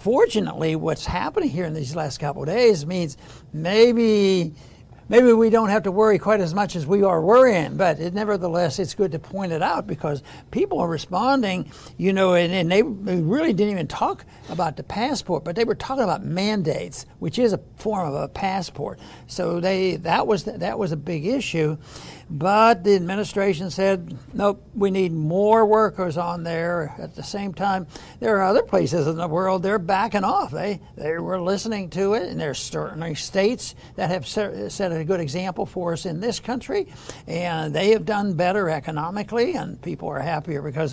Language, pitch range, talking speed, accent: English, 160-210 Hz, 190 wpm, American